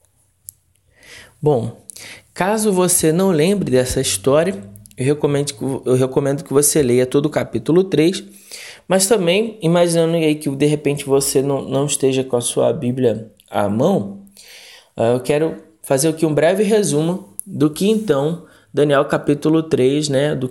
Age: 20-39